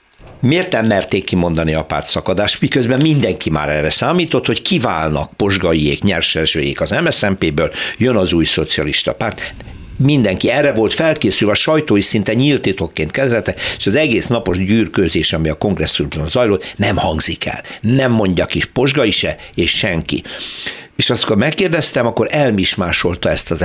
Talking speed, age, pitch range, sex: 150 wpm, 60-79, 80-125 Hz, male